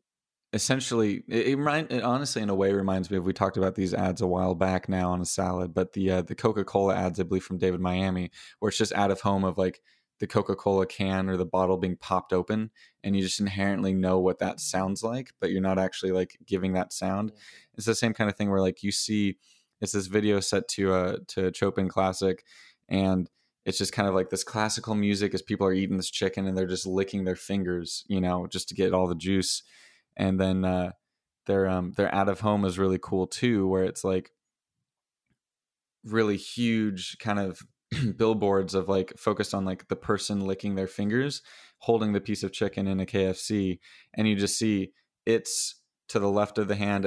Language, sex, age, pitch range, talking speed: English, male, 20-39, 95-100 Hz, 215 wpm